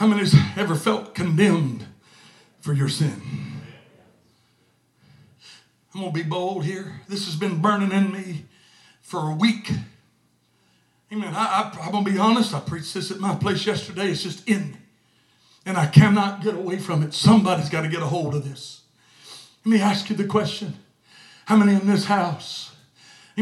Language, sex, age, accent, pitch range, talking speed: English, male, 60-79, American, 160-220 Hz, 180 wpm